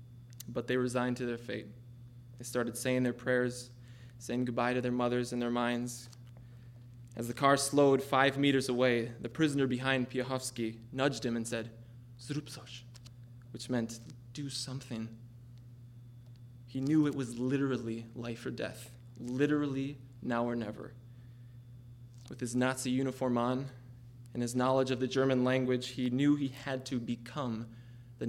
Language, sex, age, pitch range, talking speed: English, male, 20-39, 120-140 Hz, 145 wpm